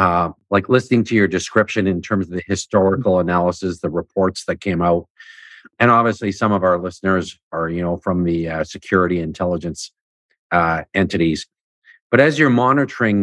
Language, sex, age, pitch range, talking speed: English, male, 50-69, 90-105 Hz, 170 wpm